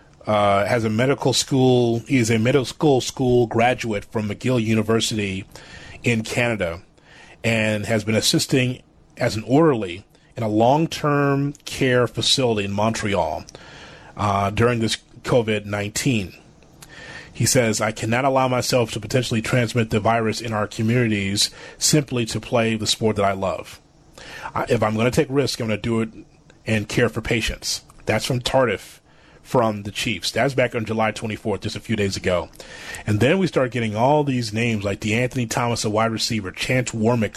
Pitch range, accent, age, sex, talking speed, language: 110-130 Hz, American, 30-49, male, 170 wpm, English